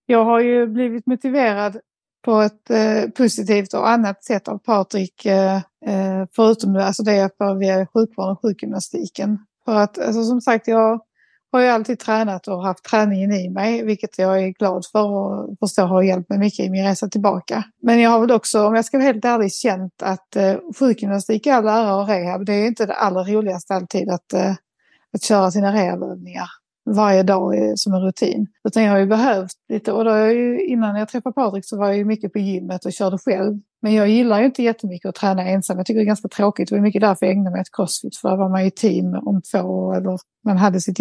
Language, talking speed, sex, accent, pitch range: Swedish, 225 wpm, female, native, 195-225 Hz